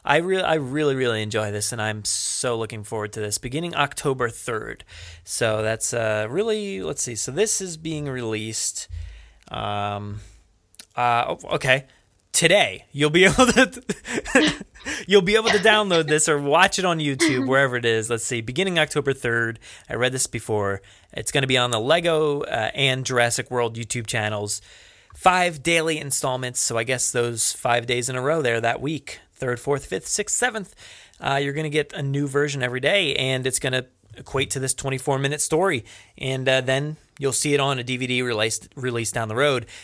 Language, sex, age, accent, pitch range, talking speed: English, male, 20-39, American, 115-145 Hz, 185 wpm